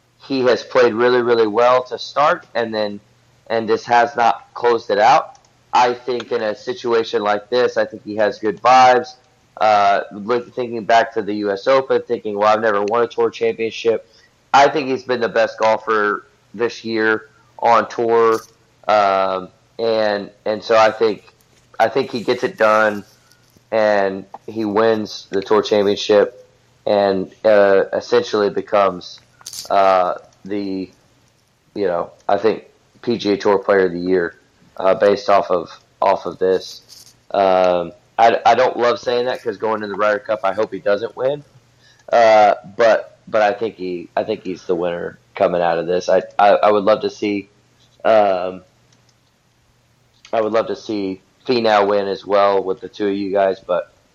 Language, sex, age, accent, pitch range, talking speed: English, male, 30-49, American, 100-120 Hz, 170 wpm